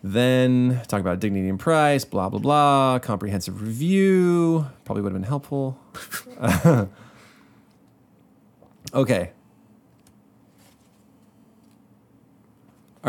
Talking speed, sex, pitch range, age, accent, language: 85 wpm, male, 110-145 Hz, 30-49, American, English